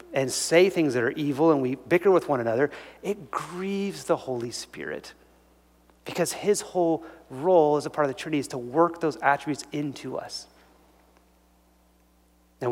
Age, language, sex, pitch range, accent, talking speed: 30-49, English, male, 135-205 Hz, American, 165 wpm